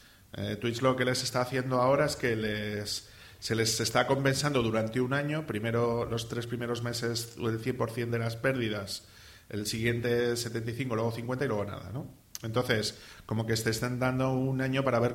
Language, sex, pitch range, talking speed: Spanish, male, 110-130 Hz, 185 wpm